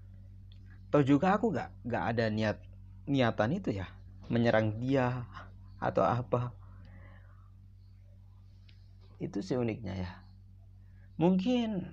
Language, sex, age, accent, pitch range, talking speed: Indonesian, male, 30-49, native, 95-120 Hz, 95 wpm